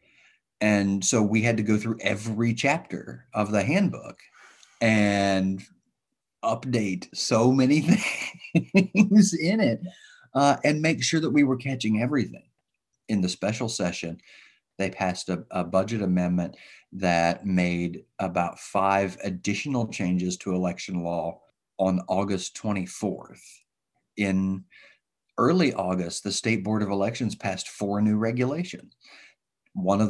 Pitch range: 95-115 Hz